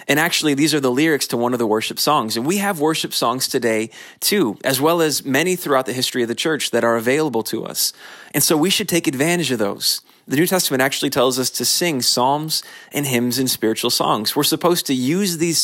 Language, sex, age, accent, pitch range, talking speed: English, male, 20-39, American, 125-165 Hz, 235 wpm